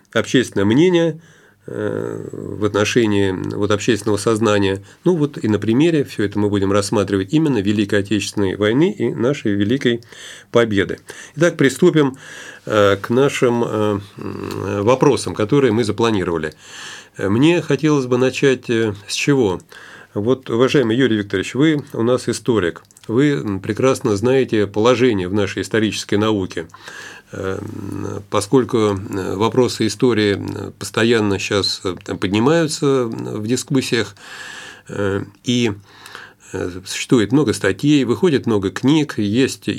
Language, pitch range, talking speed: Russian, 100-135 Hz, 105 wpm